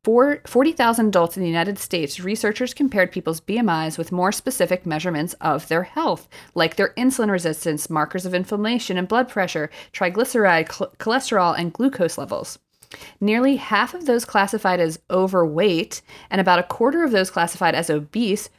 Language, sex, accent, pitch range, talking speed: English, female, American, 165-215 Hz, 155 wpm